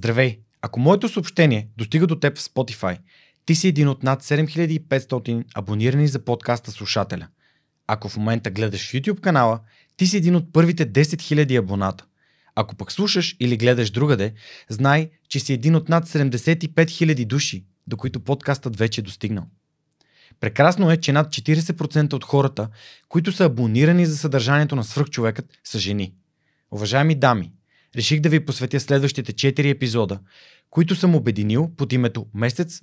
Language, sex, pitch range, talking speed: Bulgarian, male, 115-155 Hz, 155 wpm